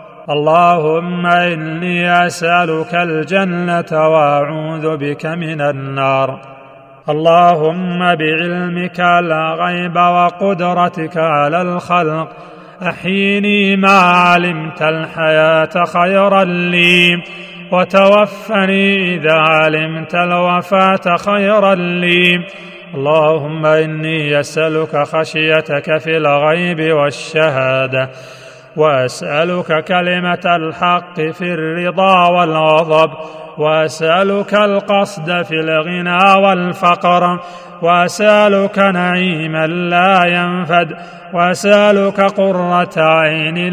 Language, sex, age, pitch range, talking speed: Arabic, male, 40-59, 160-190 Hz, 70 wpm